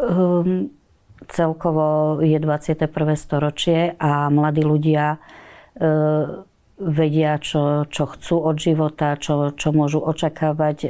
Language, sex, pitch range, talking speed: Slovak, female, 145-155 Hz, 105 wpm